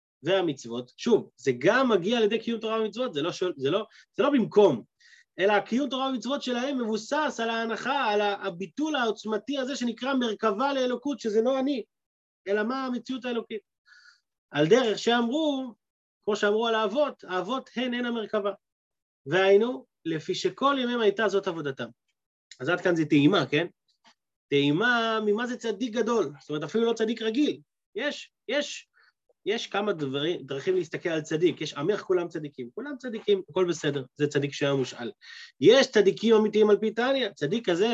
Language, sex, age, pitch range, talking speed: Hebrew, male, 30-49, 185-245 Hz, 165 wpm